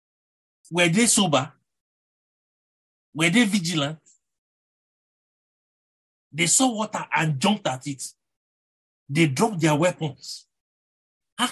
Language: English